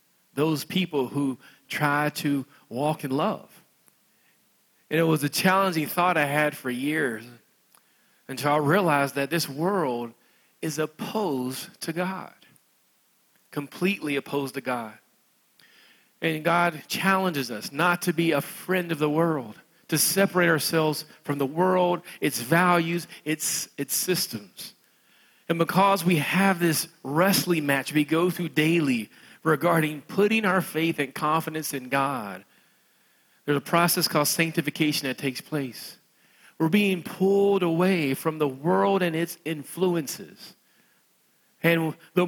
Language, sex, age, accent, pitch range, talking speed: English, male, 40-59, American, 145-185 Hz, 135 wpm